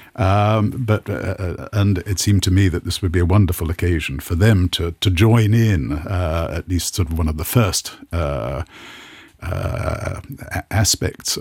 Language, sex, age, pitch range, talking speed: English, male, 50-69, 85-105 Hz, 175 wpm